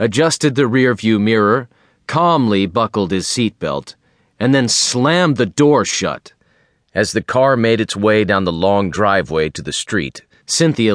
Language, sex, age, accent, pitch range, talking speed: English, male, 40-59, American, 100-125 Hz, 155 wpm